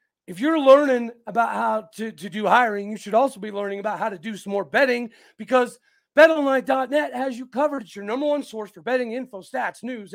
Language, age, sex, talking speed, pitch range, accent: English, 40-59, male, 215 wpm, 210-270 Hz, American